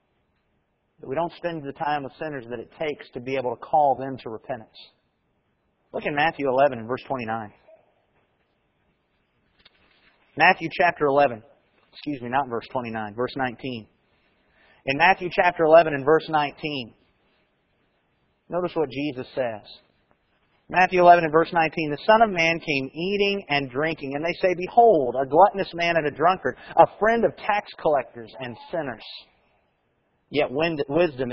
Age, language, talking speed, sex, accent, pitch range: 30-49, English, 150 wpm, male, American, 140-200 Hz